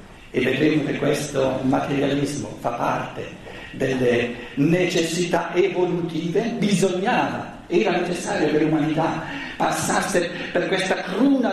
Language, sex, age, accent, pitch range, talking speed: Italian, male, 50-69, native, 150-225 Hz, 100 wpm